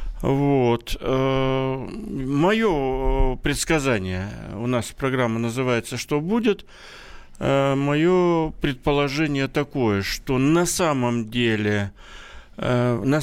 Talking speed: 75 wpm